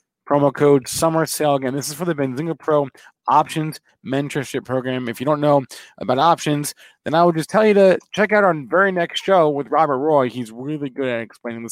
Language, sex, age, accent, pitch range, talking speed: English, male, 30-49, American, 115-150 Hz, 210 wpm